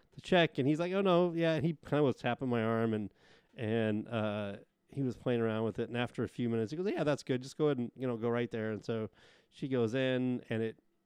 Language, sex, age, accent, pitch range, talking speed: English, male, 30-49, American, 110-130 Hz, 270 wpm